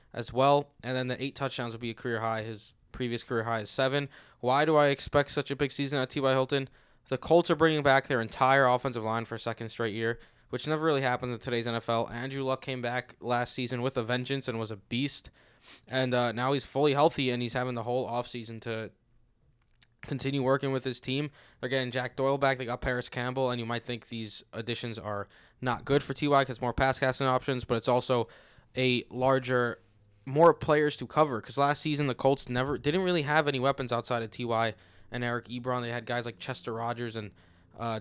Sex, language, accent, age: male, English, American, 20-39